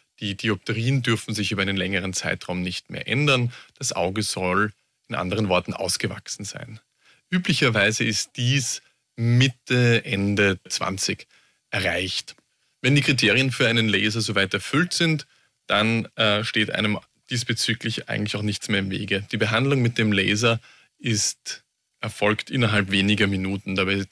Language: German